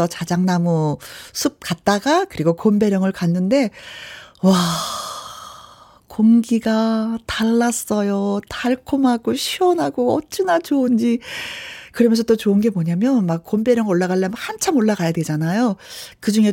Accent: native